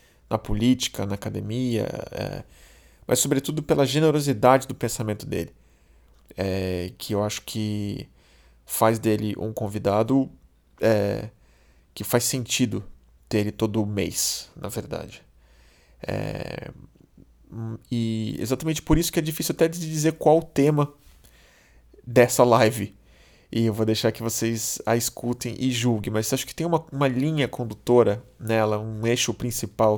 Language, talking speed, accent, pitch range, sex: Portuguese, 135 wpm, Brazilian, 100-125 Hz, male